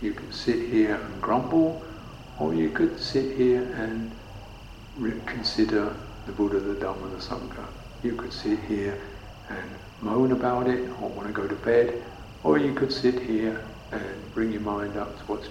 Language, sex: English, male